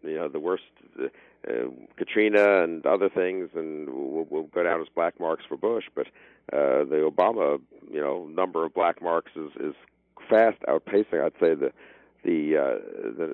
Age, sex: 60-79, male